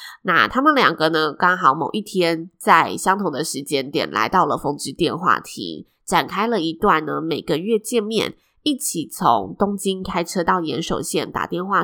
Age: 20-39